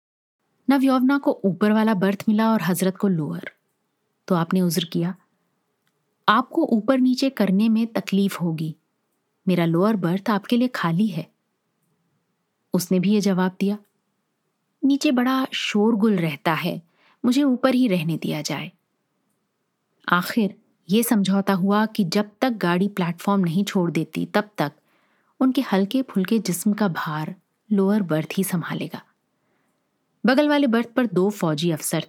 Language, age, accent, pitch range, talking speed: Hindi, 30-49, native, 175-225 Hz, 140 wpm